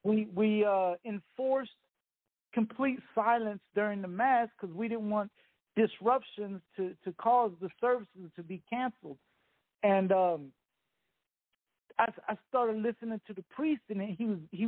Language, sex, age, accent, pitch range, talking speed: English, male, 50-69, American, 200-255 Hz, 145 wpm